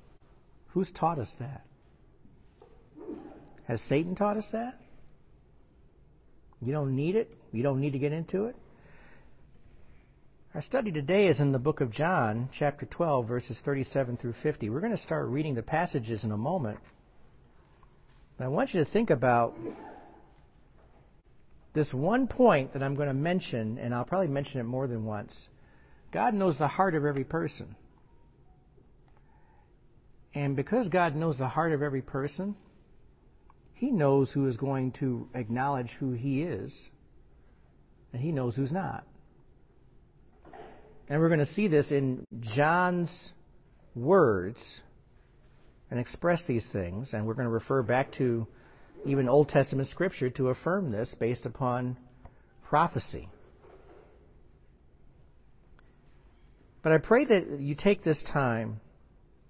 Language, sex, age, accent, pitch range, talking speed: English, male, 60-79, American, 120-160 Hz, 135 wpm